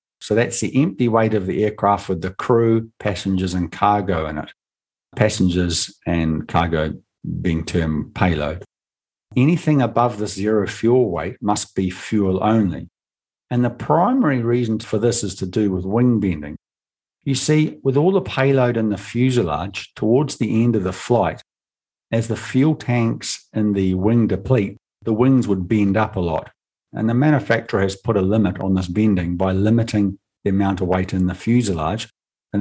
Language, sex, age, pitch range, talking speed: English, male, 50-69, 95-120 Hz, 175 wpm